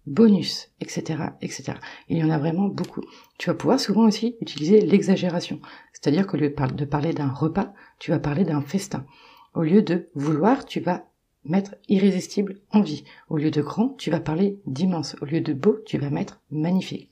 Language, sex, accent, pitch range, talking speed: French, female, French, 155-195 Hz, 185 wpm